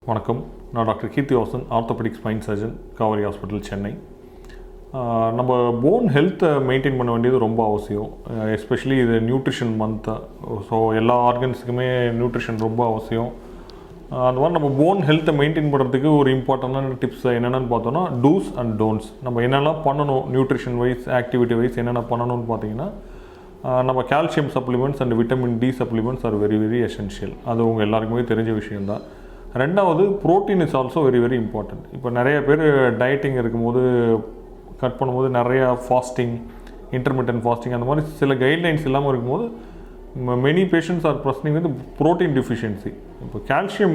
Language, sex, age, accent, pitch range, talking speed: English, male, 30-49, Indian, 115-140 Hz, 80 wpm